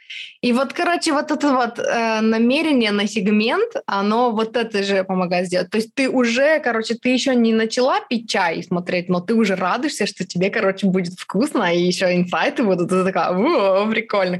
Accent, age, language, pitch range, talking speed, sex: native, 20-39, Russian, 195-245 Hz, 190 wpm, female